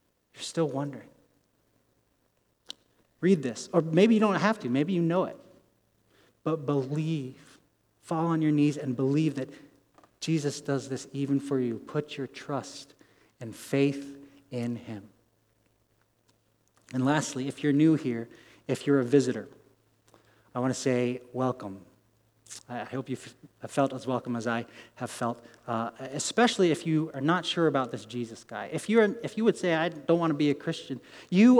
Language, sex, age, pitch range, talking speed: English, male, 30-49, 125-165 Hz, 165 wpm